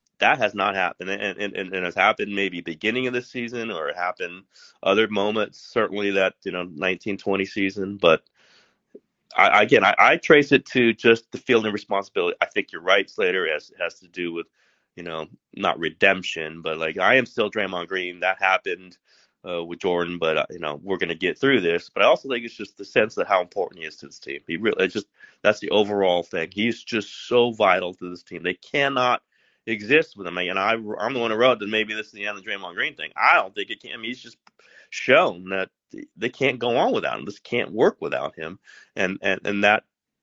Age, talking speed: 30-49, 235 wpm